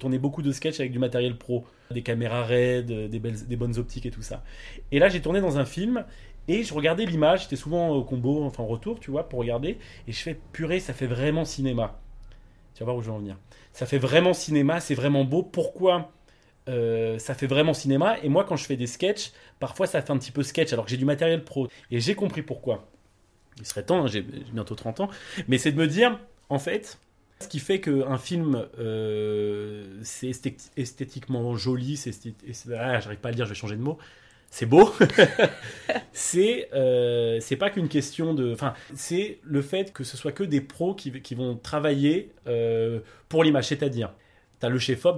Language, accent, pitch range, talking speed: French, French, 115-150 Hz, 215 wpm